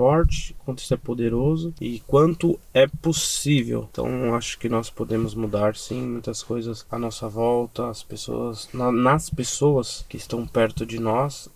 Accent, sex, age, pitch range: Brazilian, male, 20-39, 120-135 Hz